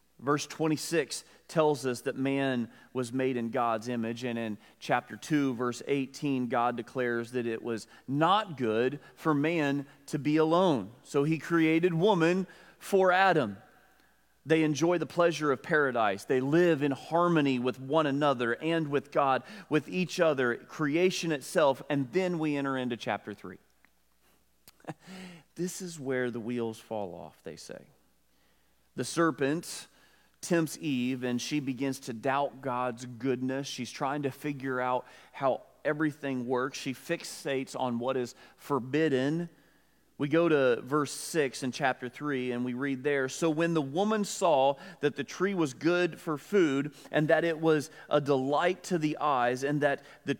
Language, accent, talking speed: English, American, 160 wpm